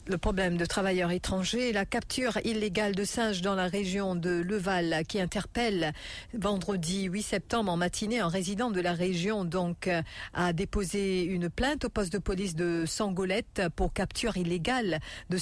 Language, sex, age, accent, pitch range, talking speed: English, female, 50-69, French, 175-215 Hz, 165 wpm